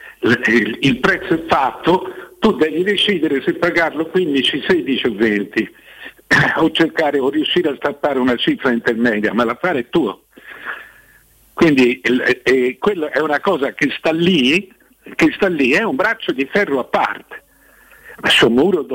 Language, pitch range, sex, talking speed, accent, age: Italian, 115-170 Hz, male, 150 wpm, native, 60-79